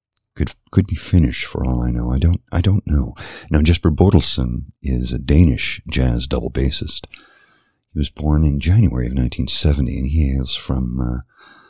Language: English